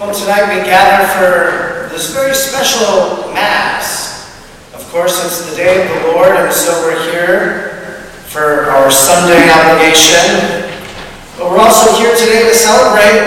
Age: 40-59